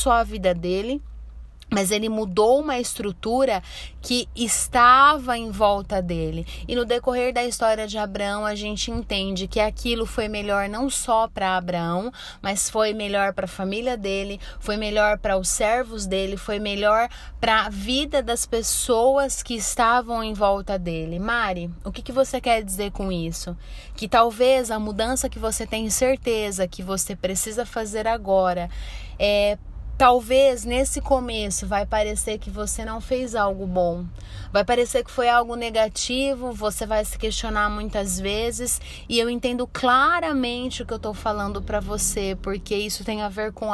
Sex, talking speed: female, 165 wpm